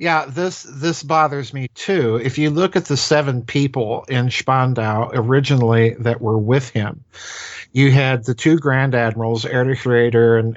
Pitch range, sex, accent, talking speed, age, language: 115-145 Hz, male, American, 165 wpm, 50-69, English